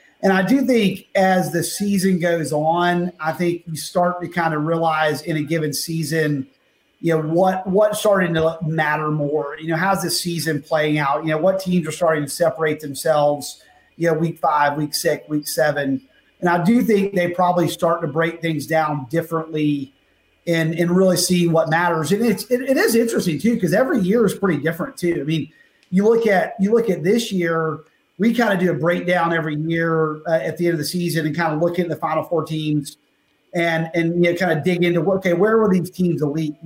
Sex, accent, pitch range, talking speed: male, American, 155-185 Hz, 220 wpm